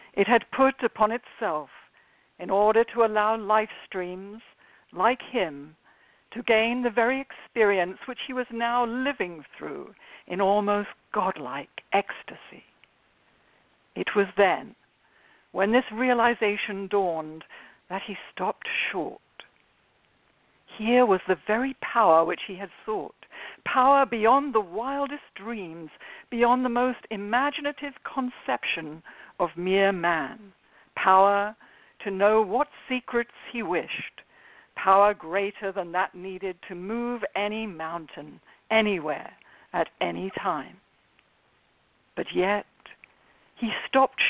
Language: English